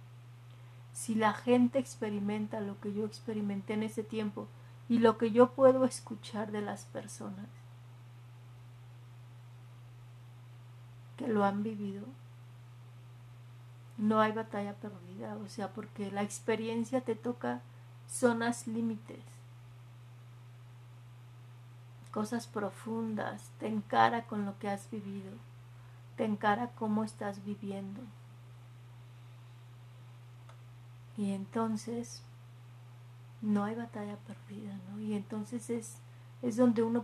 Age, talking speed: 40-59, 105 wpm